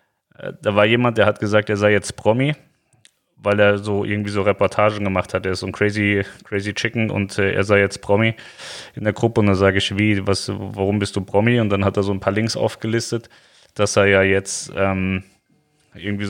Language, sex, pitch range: German, male, 95-110 Hz